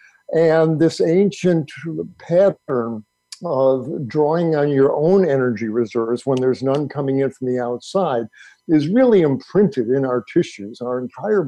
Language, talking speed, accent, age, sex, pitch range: English, 140 wpm, American, 50-69, male, 125-165 Hz